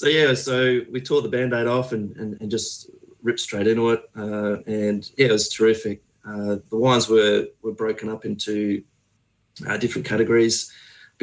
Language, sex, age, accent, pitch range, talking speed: English, male, 30-49, Australian, 105-115 Hz, 180 wpm